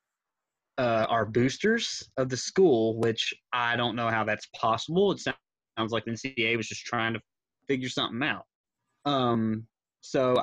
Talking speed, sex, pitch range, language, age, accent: 155 wpm, male, 115-135 Hz, English, 20-39, American